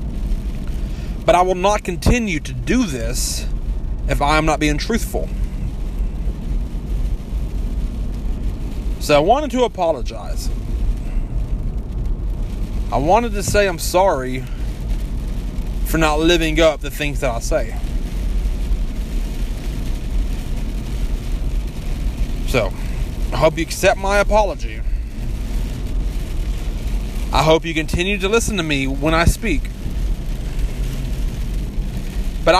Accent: American